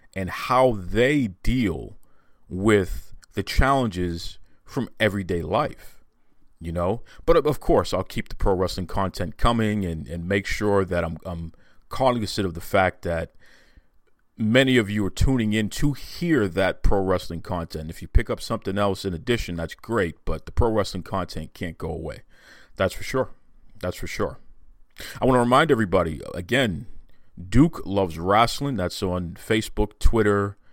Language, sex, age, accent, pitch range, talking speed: English, male, 40-59, American, 90-110 Hz, 160 wpm